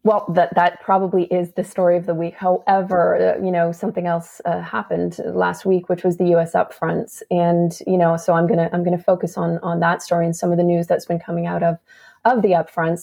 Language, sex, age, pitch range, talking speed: English, female, 30-49, 170-185 Hz, 235 wpm